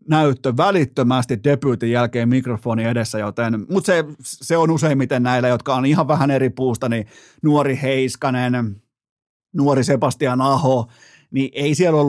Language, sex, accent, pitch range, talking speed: Finnish, male, native, 125-155 Hz, 145 wpm